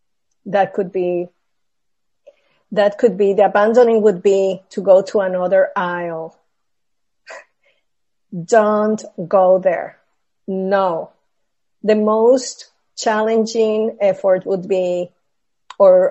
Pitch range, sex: 190-250 Hz, female